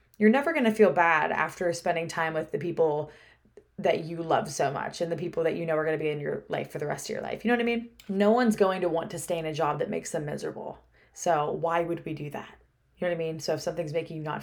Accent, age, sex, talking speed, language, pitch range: American, 20-39, female, 300 wpm, English, 165-200 Hz